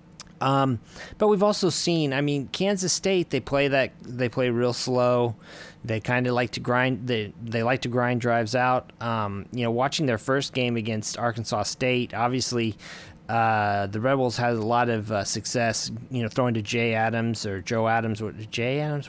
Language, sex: English, male